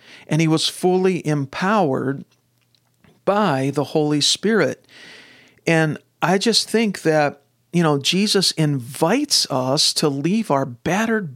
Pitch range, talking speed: 135-170 Hz, 120 wpm